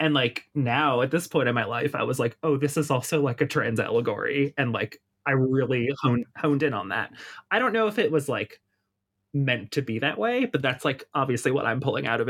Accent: American